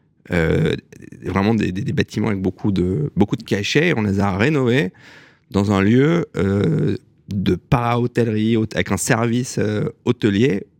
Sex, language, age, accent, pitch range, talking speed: male, French, 30-49, French, 100-120 Hz, 155 wpm